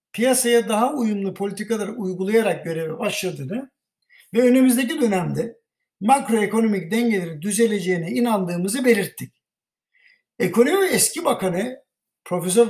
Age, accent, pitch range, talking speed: 60-79, native, 180-235 Hz, 90 wpm